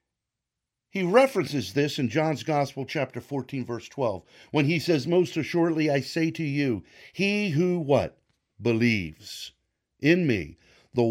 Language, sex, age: English, male, 50-69